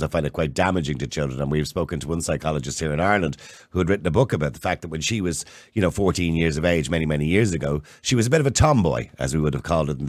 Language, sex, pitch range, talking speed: English, male, 80-115 Hz, 310 wpm